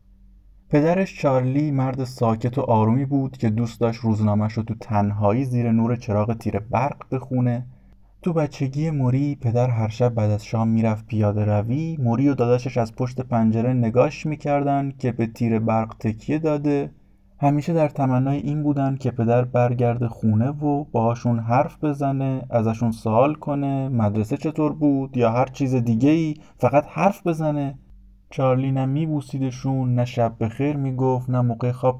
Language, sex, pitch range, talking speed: Persian, male, 115-140 Hz, 155 wpm